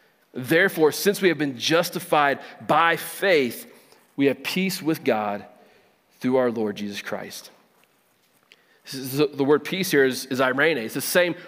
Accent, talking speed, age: American, 150 wpm, 40-59